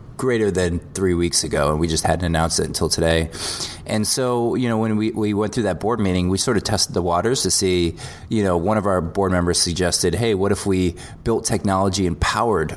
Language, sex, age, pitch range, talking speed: English, male, 20-39, 85-100 Hz, 230 wpm